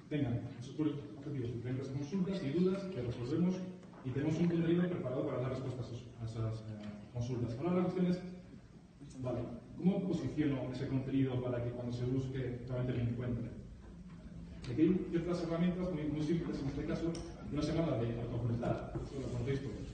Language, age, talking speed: Spanish, 30-49, 165 wpm